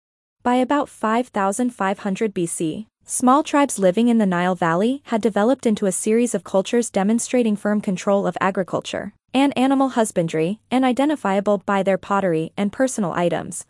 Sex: female